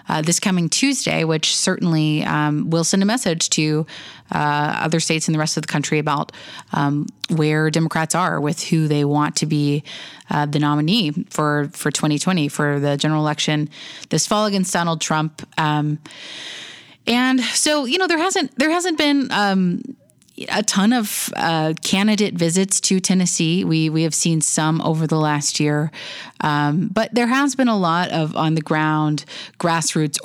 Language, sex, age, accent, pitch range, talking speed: English, female, 30-49, American, 150-195 Hz, 175 wpm